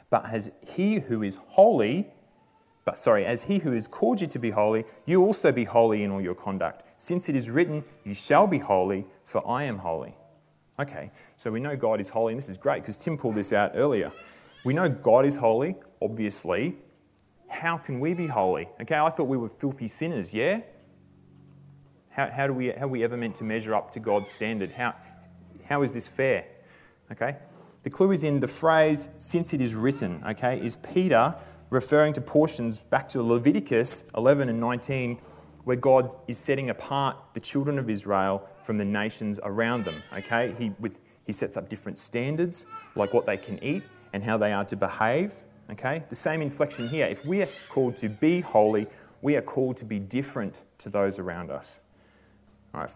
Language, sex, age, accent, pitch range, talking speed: English, male, 30-49, Australian, 105-140 Hz, 195 wpm